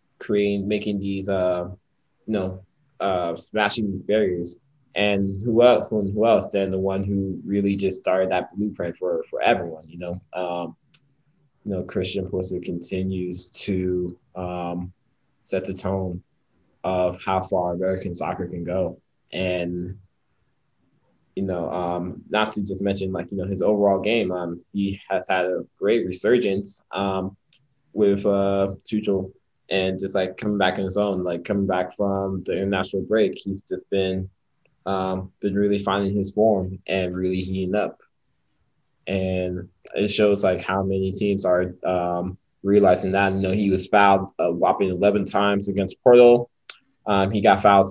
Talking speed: 160 wpm